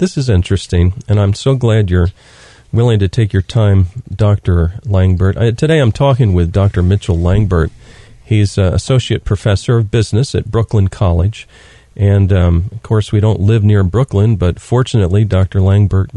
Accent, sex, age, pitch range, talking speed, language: American, male, 40-59, 95-115 Hz, 165 wpm, English